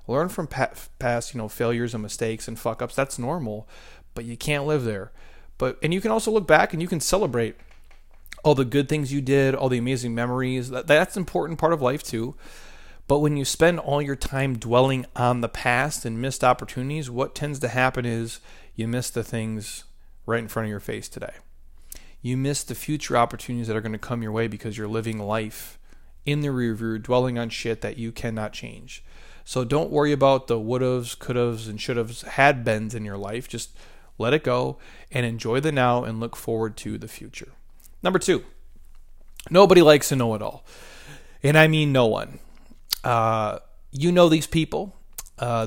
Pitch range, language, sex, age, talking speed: 115-140 Hz, English, male, 30-49, 200 wpm